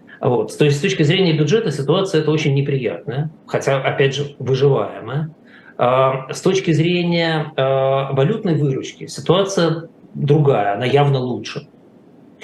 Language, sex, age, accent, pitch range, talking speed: Russian, male, 20-39, native, 125-150 Hz, 125 wpm